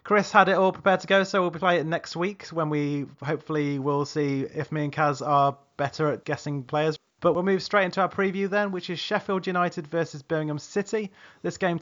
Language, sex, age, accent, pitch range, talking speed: English, male, 30-49, British, 145-180 Hz, 230 wpm